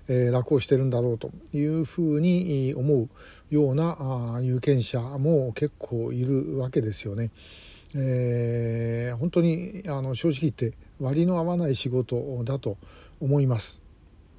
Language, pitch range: Japanese, 120-145 Hz